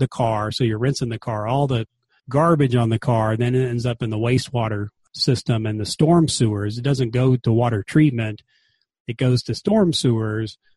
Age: 30-49